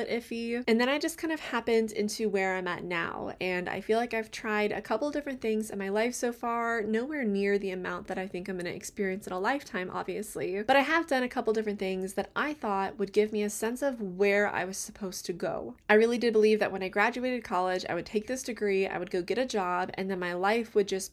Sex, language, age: female, English, 20-39